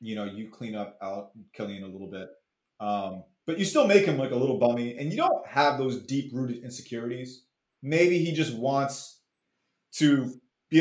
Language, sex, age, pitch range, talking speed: English, male, 30-49, 125-160 Hz, 185 wpm